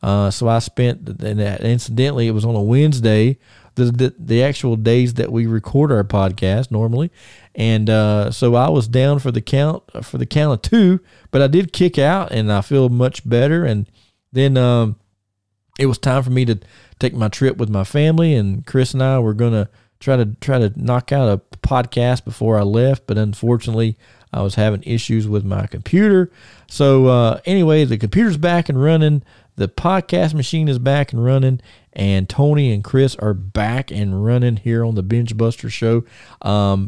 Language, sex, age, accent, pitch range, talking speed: English, male, 40-59, American, 105-140 Hz, 190 wpm